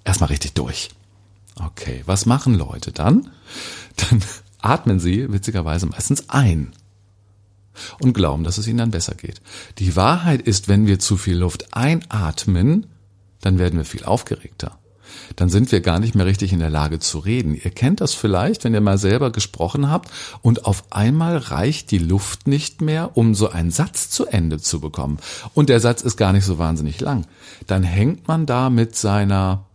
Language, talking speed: German, 180 wpm